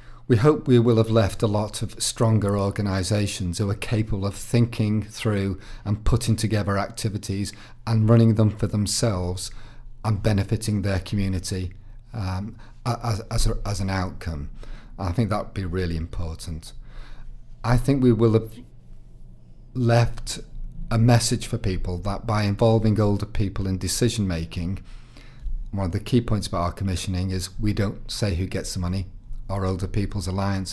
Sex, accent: male, British